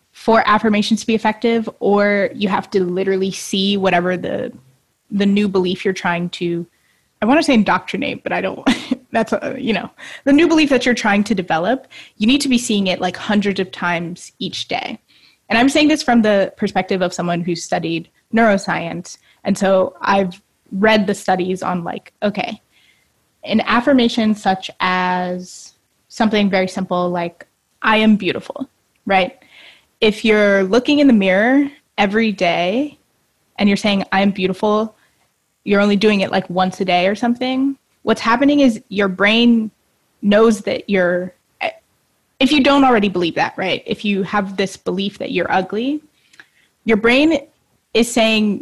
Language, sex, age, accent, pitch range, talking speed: English, female, 20-39, American, 190-235 Hz, 165 wpm